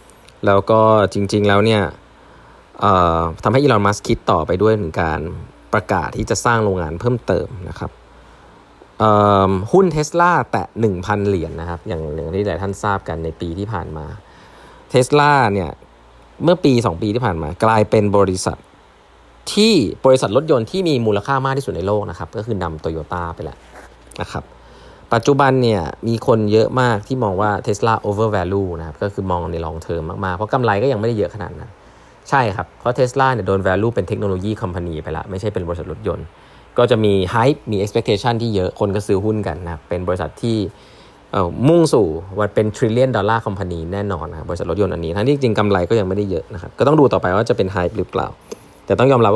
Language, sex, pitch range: Thai, male, 90-115 Hz